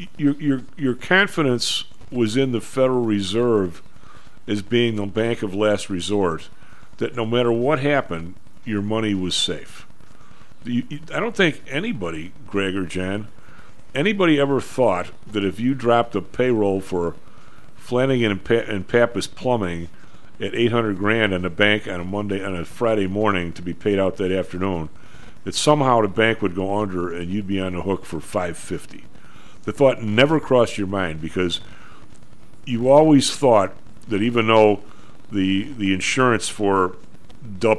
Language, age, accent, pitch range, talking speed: English, 50-69, American, 95-120 Hz, 165 wpm